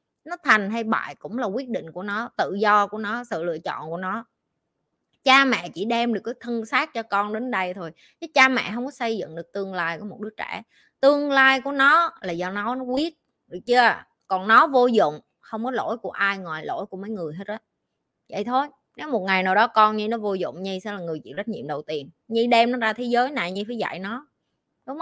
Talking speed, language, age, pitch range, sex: 255 wpm, Vietnamese, 20-39, 205-265 Hz, female